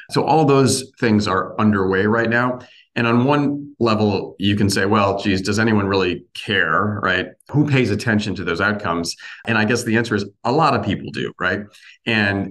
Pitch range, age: 95-110 Hz, 40-59